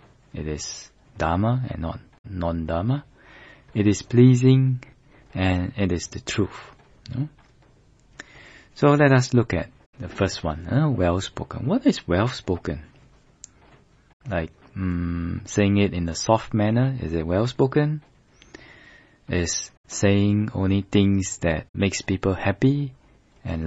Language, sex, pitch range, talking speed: English, male, 85-120 Hz, 115 wpm